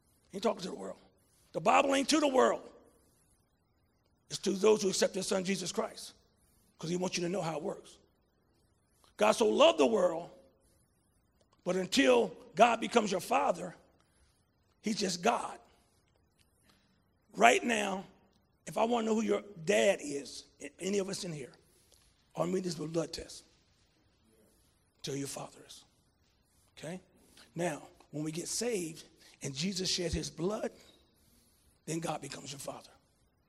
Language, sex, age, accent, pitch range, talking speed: English, male, 40-59, American, 150-235 Hz, 150 wpm